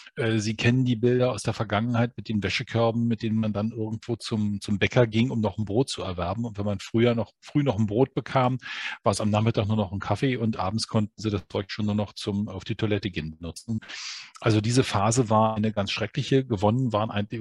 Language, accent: German, German